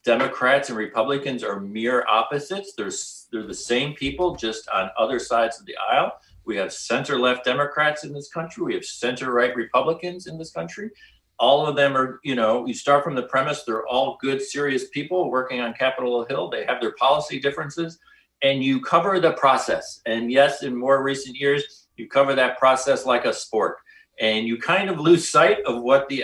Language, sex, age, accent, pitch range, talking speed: English, male, 40-59, American, 120-165 Hz, 195 wpm